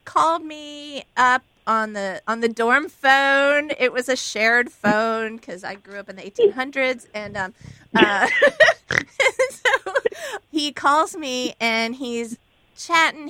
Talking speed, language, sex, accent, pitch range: 145 wpm, English, female, American, 220-315 Hz